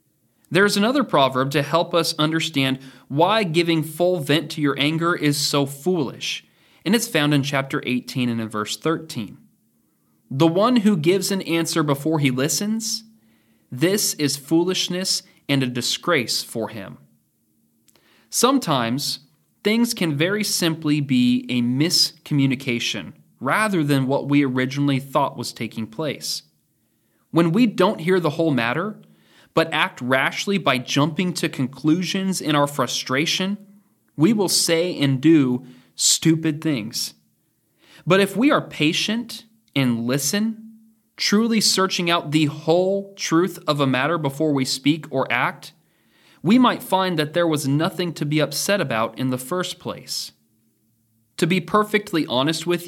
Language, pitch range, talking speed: English, 130-185 Hz, 145 wpm